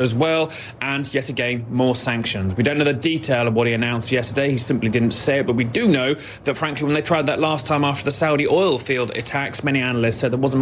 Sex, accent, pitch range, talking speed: male, British, 120-140 Hz, 255 wpm